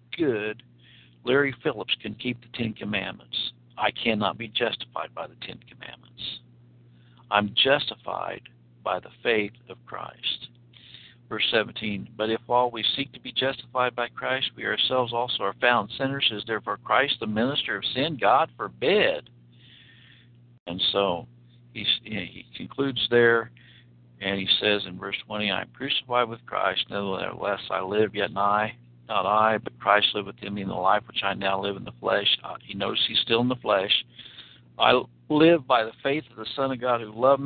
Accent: American